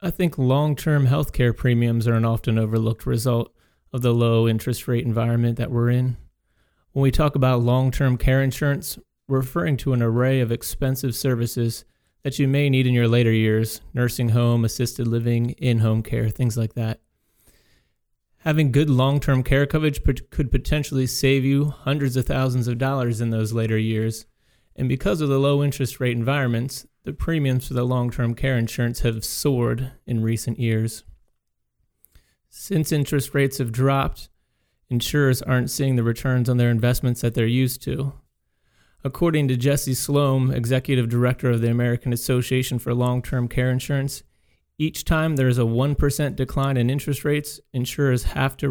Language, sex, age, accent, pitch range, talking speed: English, male, 30-49, American, 120-135 Hz, 165 wpm